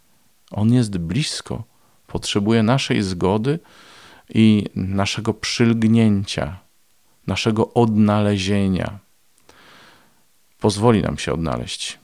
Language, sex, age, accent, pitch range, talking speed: Polish, male, 40-59, native, 90-105 Hz, 75 wpm